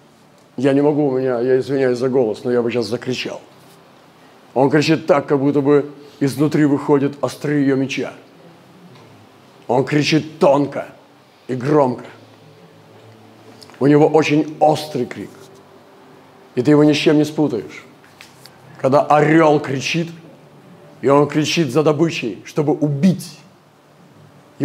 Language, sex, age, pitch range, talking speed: Russian, male, 50-69, 130-150 Hz, 130 wpm